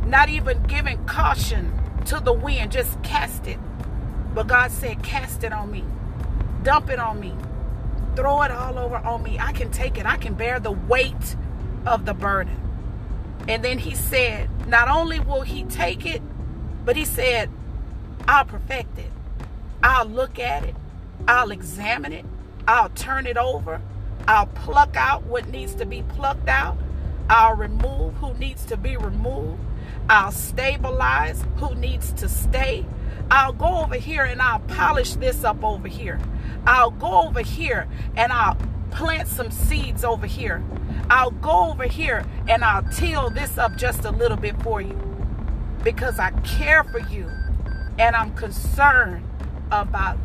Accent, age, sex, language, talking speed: American, 40-59, female, English, 160 wpm